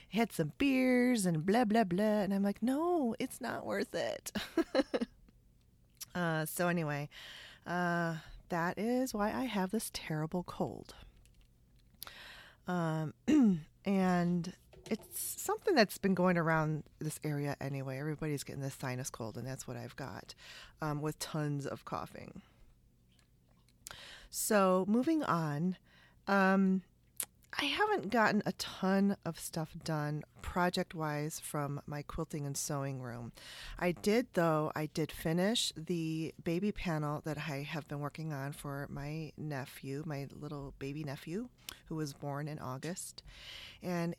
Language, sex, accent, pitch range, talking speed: English, female, American, 145-190 Hz, 135 wpm